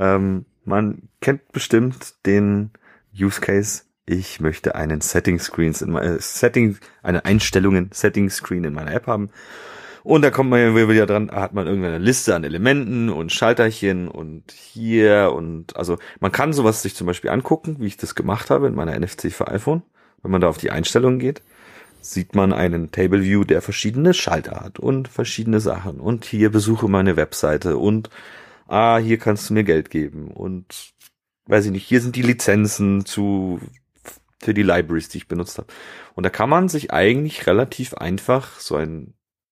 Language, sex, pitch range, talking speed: German, male, 95-120 Hz, 175 wpm